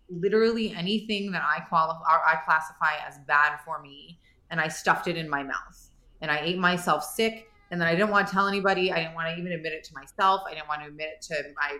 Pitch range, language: 160-205 Hz, English